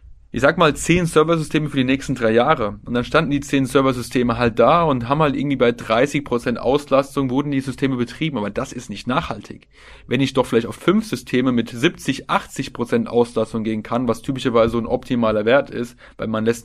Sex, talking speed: male, 205 wpm